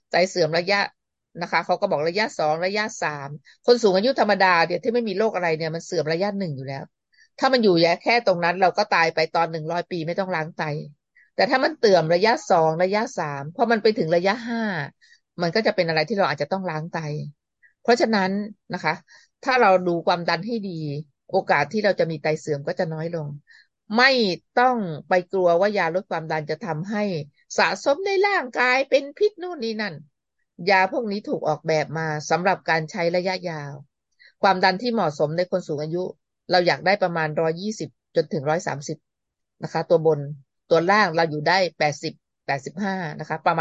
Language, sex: Thai, female